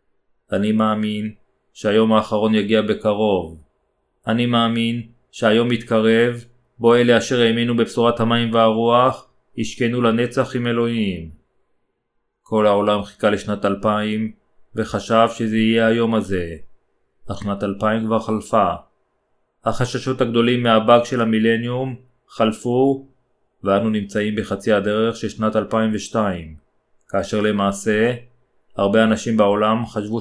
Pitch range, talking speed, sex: 105-115 Hz, 110 wpm, male